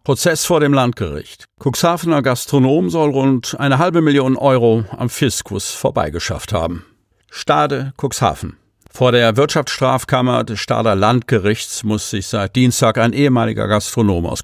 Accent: German